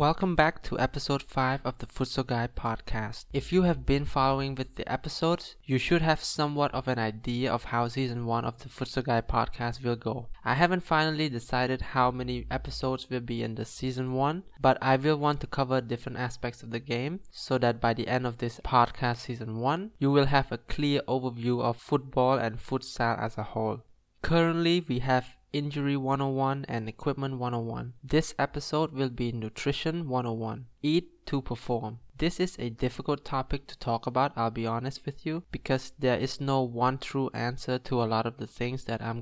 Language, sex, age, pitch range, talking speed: English, male, 20-39, 120-140 Hz, 195 wpm